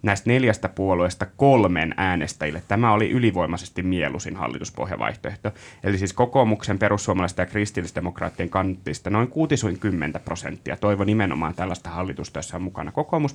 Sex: male